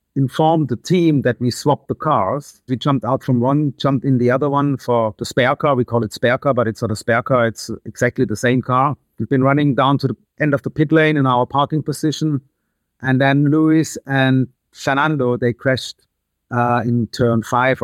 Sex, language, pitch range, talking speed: male, English, 120-140 Hz, 215 wpm